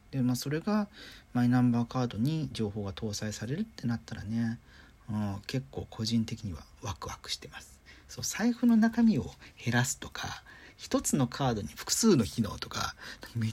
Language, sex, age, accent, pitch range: Japanese, male, 40-59, native, 105-145 Hz